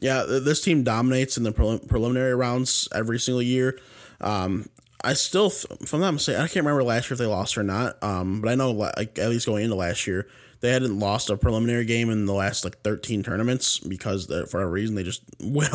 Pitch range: 105-130 Hz